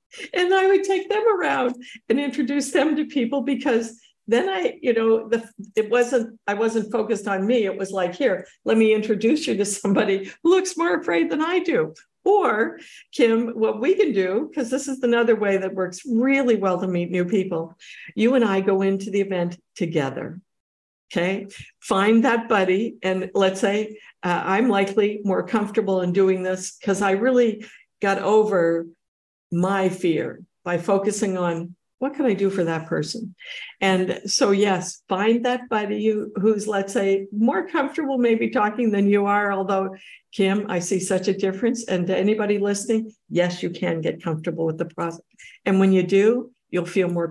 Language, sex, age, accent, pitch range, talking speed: English, female, 50-69, American, 185-230 Hz, 180 wpm